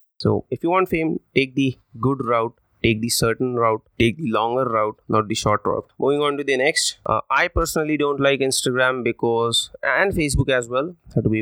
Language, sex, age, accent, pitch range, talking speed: English, male, 20-39, Indian, 120-150 Hz, 205 wpm